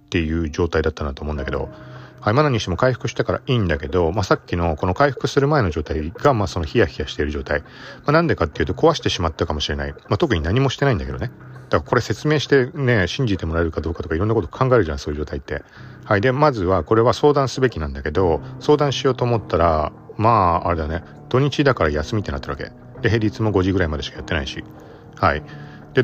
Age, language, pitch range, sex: 40-59, Japanese, 80-125 Hz, male